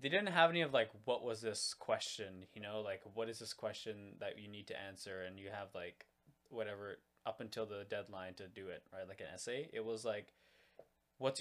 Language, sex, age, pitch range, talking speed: English, male, 20-39, 95-125 Hz, 220 wpm